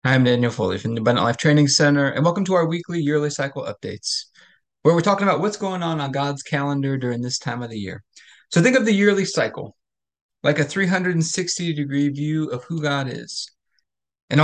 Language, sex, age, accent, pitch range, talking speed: English, male, 30-49, American, 140-175 Hz, 205 wpm